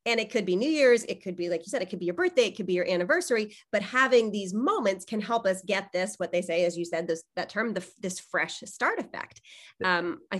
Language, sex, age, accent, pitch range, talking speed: English, female, 30-49, American, 185-240 Hz, 270 wpm